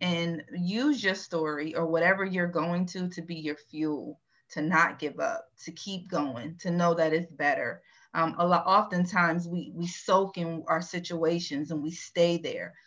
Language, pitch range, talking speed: English, 160-185 Hz, 180 wpm